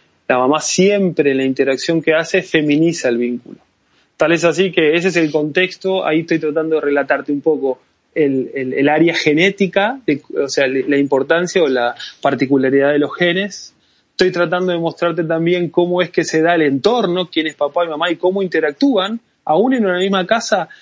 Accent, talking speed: Argentinian, 195 wpm